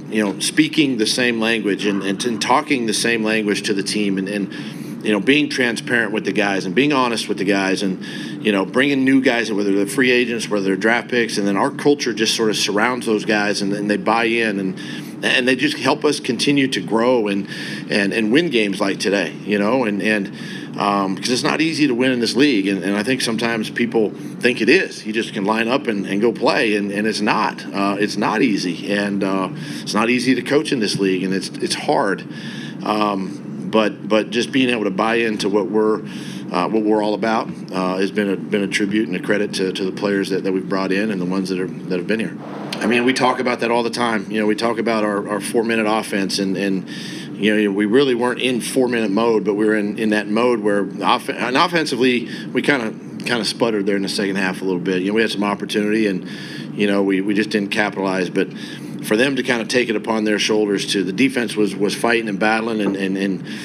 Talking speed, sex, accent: 250 wpm, male, American